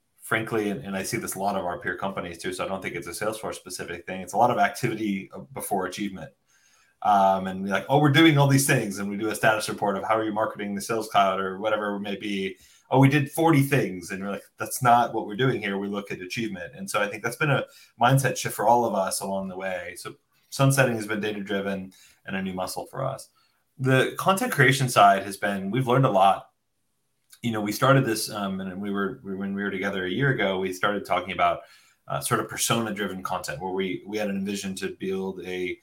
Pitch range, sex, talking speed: 95-130 Hz, male, 250 wpm